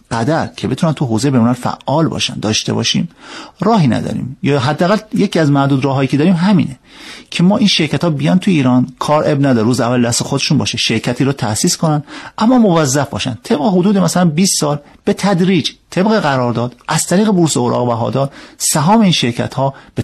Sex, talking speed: male, 190 wpm